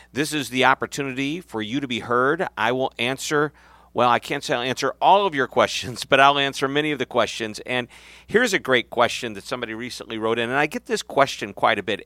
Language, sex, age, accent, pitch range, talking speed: English, male, 50-69, American, 105-140 Hz, 235 wpm